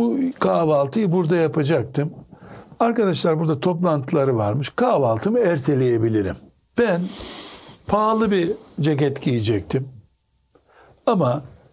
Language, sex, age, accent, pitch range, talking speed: Turkish, male, 60-79, native, 125-175 Hz, 80 wpm